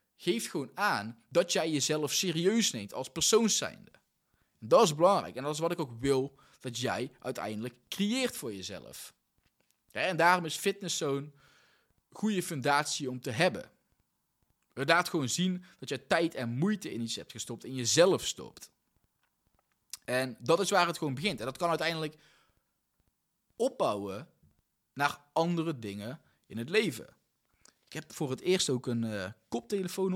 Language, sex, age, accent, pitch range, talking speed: Dutch, male, 20-39, Dutch, 130-185 Hz, 155 wpm